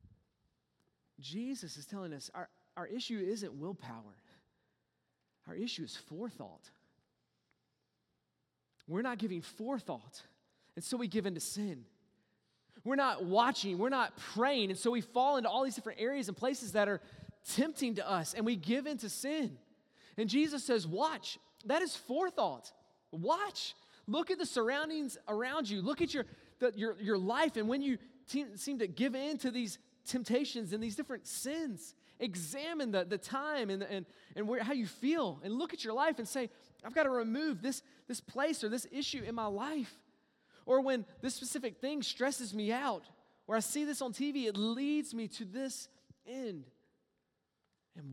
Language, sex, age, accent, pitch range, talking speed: English, male, 30-49, American, 195-265 Hz, 170 wpm